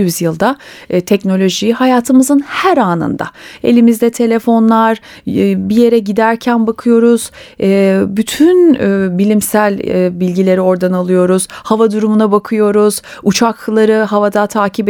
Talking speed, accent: 110 wpm, native